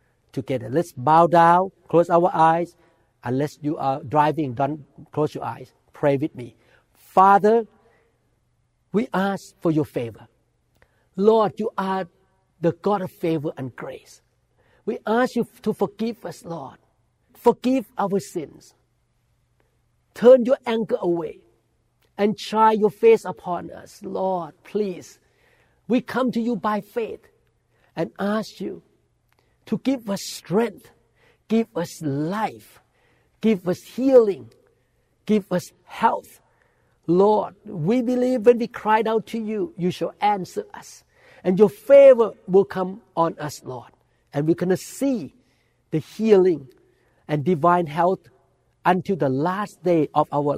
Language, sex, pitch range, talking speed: English, male, 150-215 Hz, 135 wpm